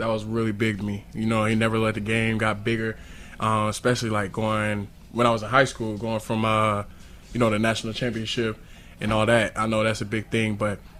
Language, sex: English, male